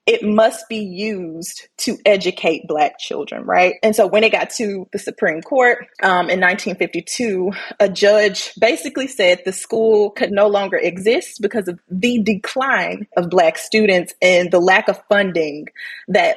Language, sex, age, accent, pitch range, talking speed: English, female, 20-39, American, 180-230 Hz, 160 wpm